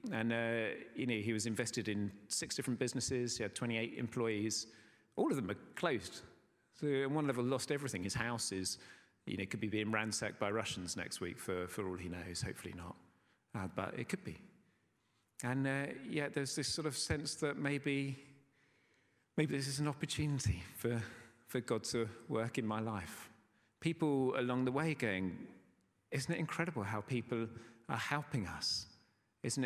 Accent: British